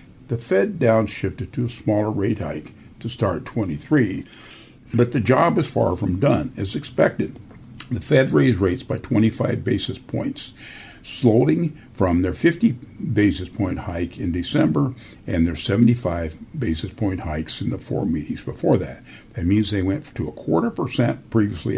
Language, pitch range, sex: English, 100-125 Hz, male